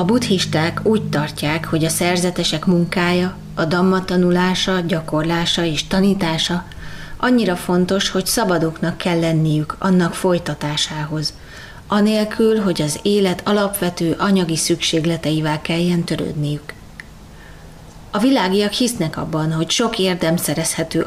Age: 30-49